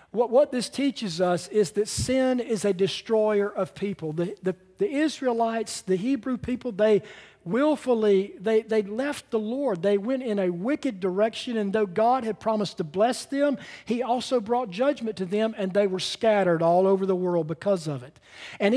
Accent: American